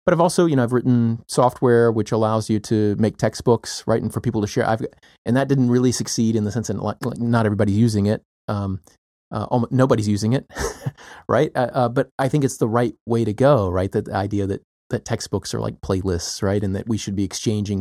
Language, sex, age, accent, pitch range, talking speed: English, male, 30-49, American, 100-125 Hz, 230 wpm